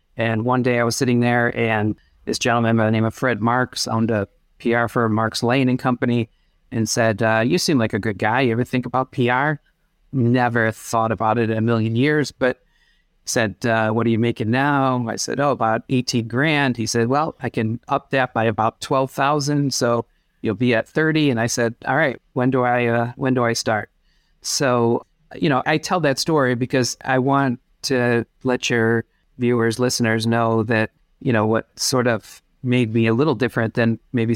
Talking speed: 205 wpm